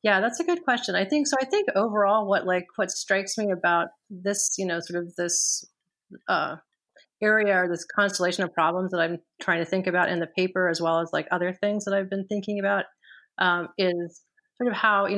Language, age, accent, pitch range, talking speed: English, 30-49, American, 170-215 Hz, 220 wpm